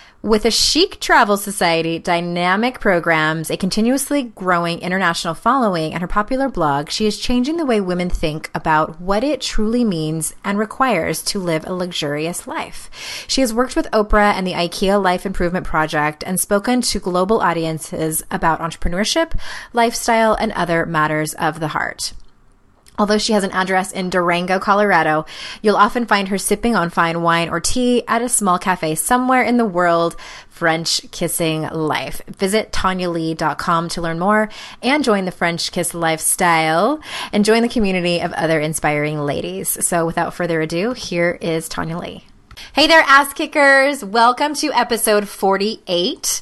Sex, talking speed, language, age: female, 160 wpm, English, 20-39